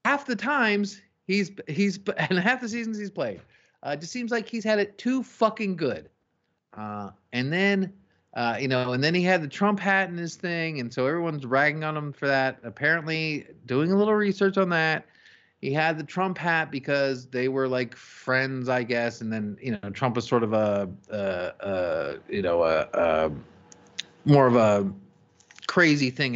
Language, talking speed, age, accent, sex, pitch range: English, 195 wpm, 30-49, American, male, 120-185 Hz